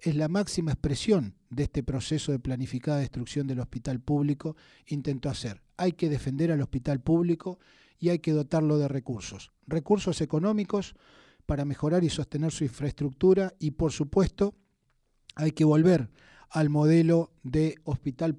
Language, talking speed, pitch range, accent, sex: Spanish, 145 wpm, 135-165 Hz, Argentinian, male